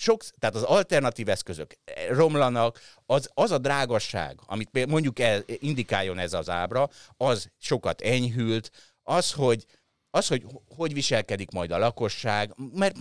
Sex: male